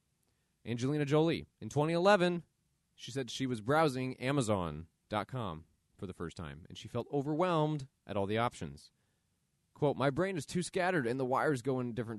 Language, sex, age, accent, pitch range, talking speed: English, male, 30-49, American, 95-140 Hz, 165 wpm